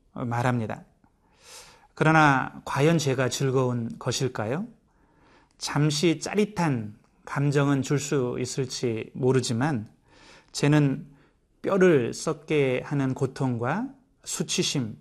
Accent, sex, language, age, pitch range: native, male, Korean, 30-49, 130-165 Hz